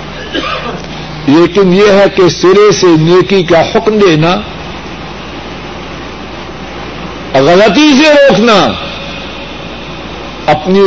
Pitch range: 165-225 Hz